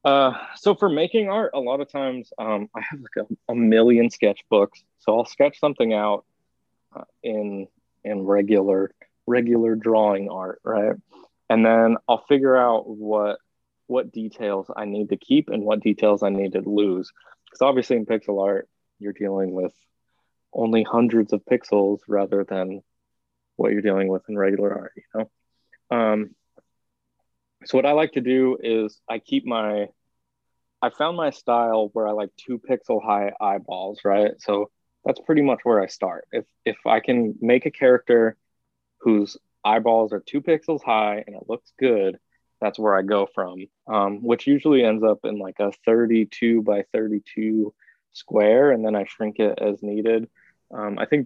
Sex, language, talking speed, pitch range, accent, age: male, English, 170 wpm, 100-120 Hz, American, 20-39